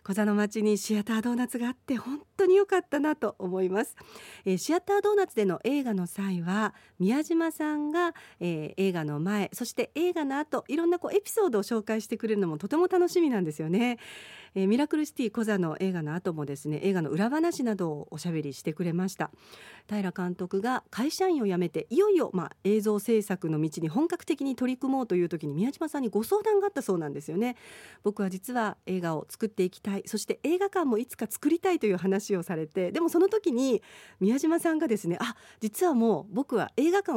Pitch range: 190-295 Hz